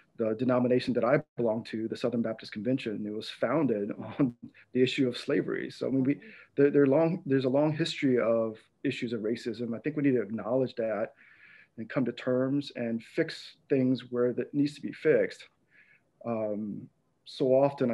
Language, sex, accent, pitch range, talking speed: English, male, American, 115-140 Hz, 165 wpm